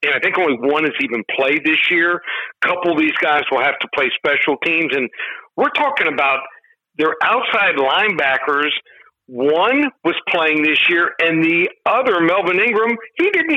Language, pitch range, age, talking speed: English, 150-235 Hz, 50-69, 175 wpm